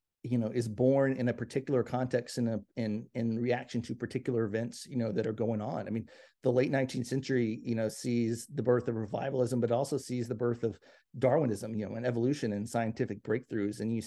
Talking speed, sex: 215 wpm, male